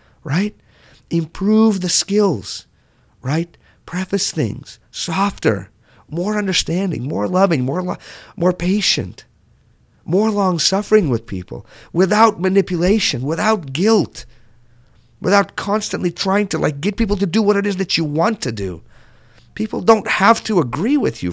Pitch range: 115-170 Hz